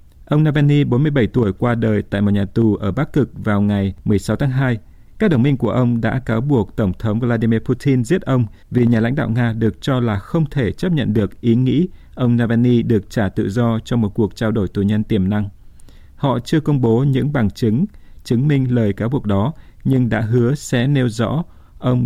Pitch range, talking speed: 105-130 Hz, 225 wpm